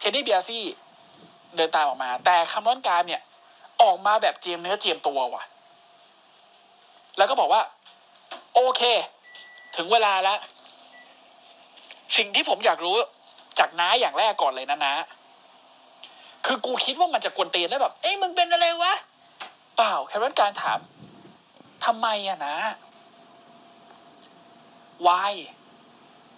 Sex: male